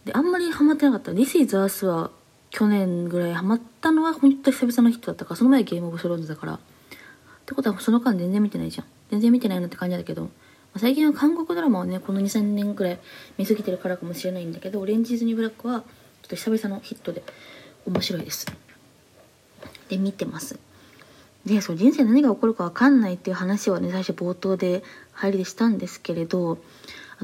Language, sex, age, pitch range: Japanese, female, 20-39, 170-230 Hz